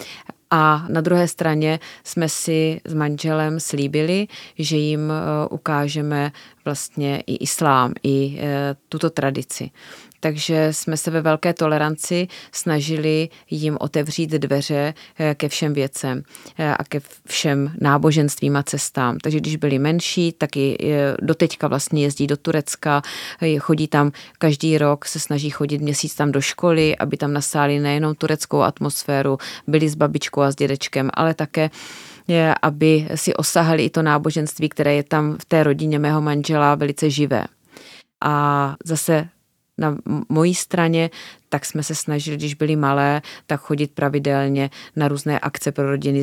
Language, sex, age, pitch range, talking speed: Czech, female, 30-49, 145-160 Hz, 145 wpm